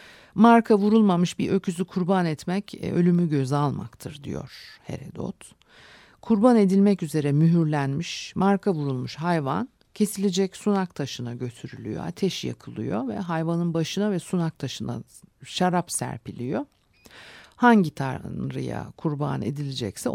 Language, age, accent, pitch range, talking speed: Turkish, 50-69, native, 145-195 Hz, 110 wpm